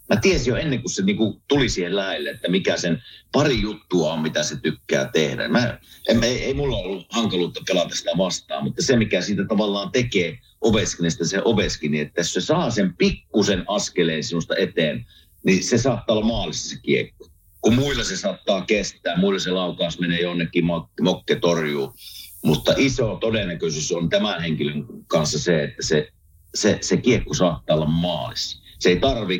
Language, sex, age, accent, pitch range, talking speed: Finnish, male, 50-69, native, 80-110 Hz, 160 wpm